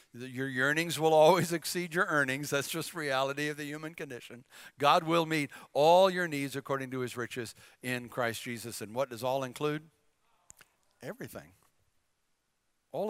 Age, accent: 60-79, American